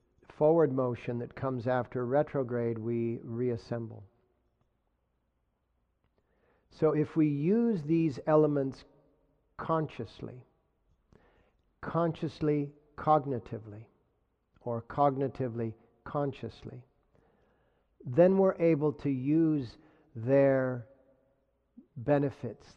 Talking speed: 70 wpm